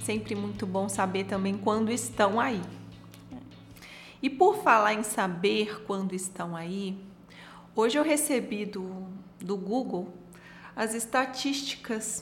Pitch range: 200-245 Hz